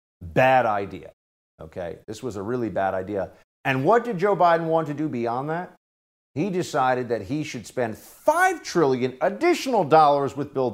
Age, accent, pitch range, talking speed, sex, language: 50-69, American, 95-130 Hz, 175 wpm, male, English